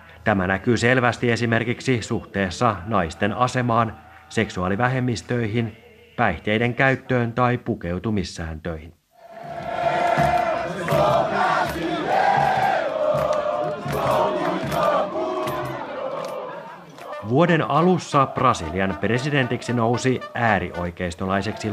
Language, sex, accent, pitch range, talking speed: Finnish, male, native, 100-130 Hz, 50 wpm